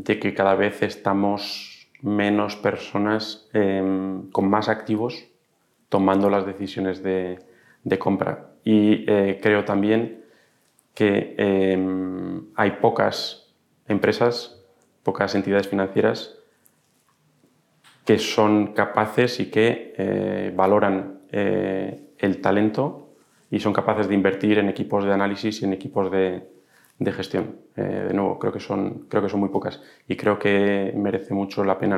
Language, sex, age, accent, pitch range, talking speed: Spanish, male, 30-49, Spanish, 95-105 Hz, 135 wpm